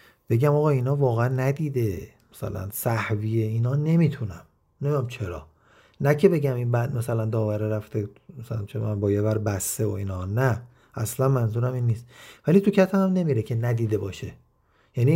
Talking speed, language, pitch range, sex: 160 wpm, Persian, 110-145 Hz, male